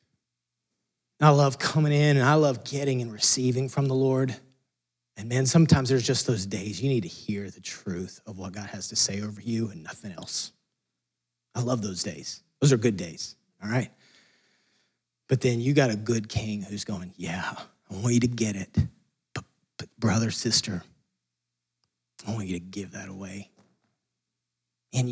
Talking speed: 175 wpm